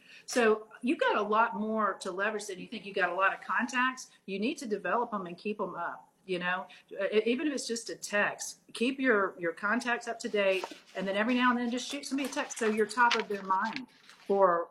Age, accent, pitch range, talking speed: 40-59, American, 180-230 Hz, 240 wpm